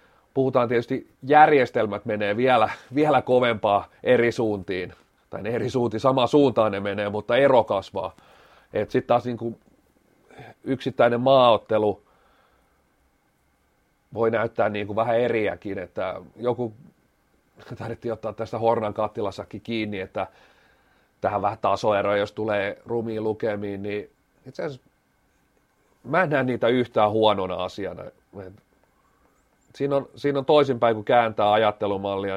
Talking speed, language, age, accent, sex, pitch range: 120 wpm, Finnish, 30-49, native, male, 105-120 Hz